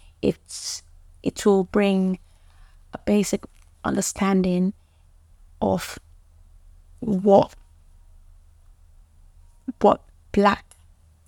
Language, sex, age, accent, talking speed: English, female, 20-39, British, 60 wpm